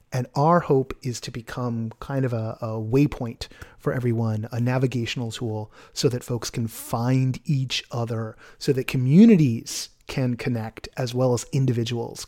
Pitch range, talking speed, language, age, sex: 120-155 Hz, 155 wpm, English, 30-49, male